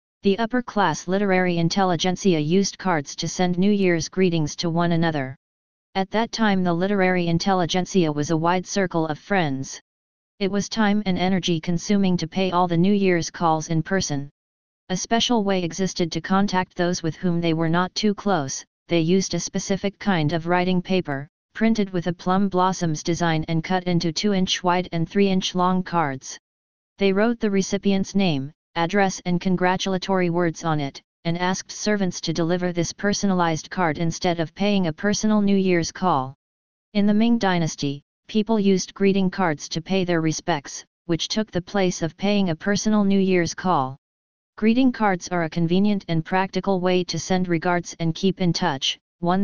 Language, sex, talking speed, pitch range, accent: English, female, 175 wpm, 165-195 Hz, American